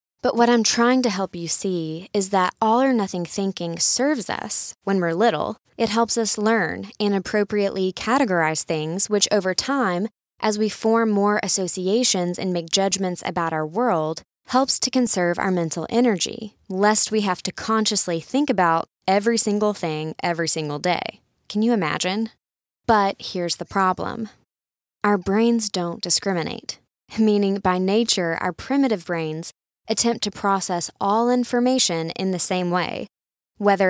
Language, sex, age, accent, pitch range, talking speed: English, female, 20-39, American, 175-225 Hz, 150 wpm